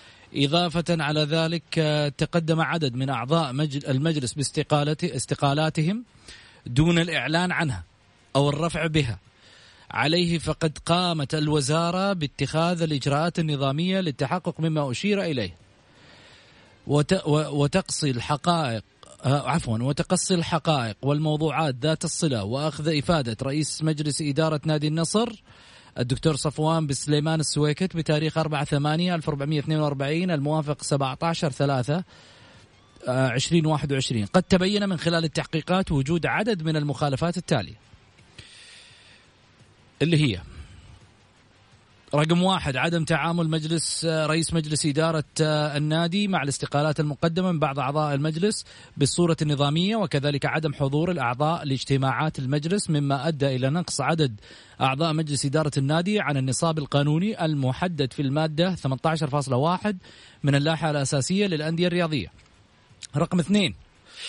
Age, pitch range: 30-49, 140-165 Hz